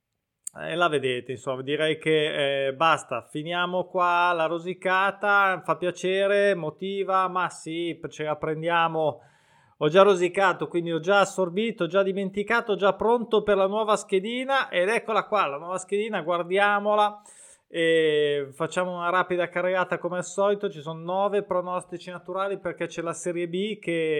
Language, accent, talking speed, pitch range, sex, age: Italian, native, 150 wpm, 150-195 Hz, male, 20-39